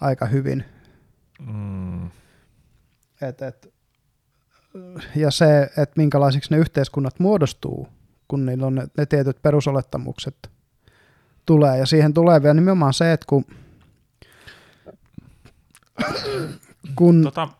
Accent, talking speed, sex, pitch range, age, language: native, 95 wpm, male, 125-155 Hz, 20-39, Finnish